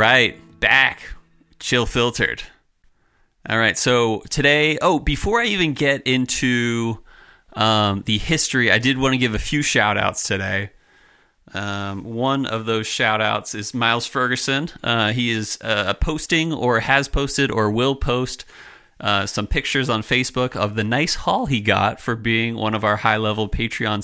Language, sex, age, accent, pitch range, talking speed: English, male, 30-49, American, 105-130 Hz, 165 wpm